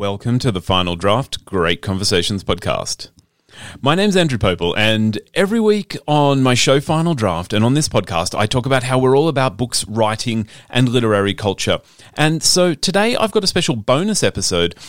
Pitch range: 110-155 Hz